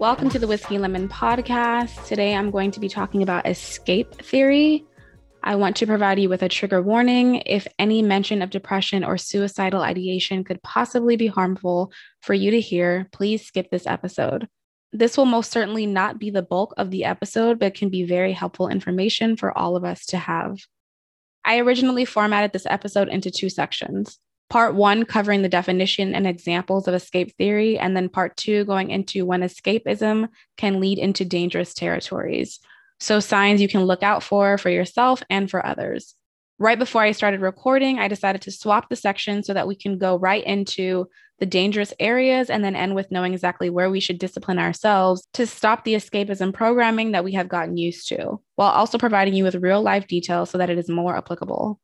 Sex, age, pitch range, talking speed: female, 20-39, 185-215 Hz, 190 wpm